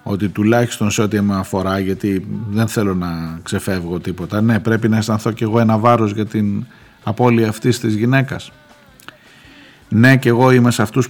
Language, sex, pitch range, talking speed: Greek, male, 100-130 Hz, 175 wpm